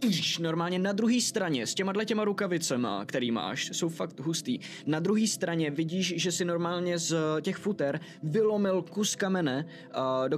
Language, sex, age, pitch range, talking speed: Czech, male, 20-39, 140-180 Hz, 155 wpm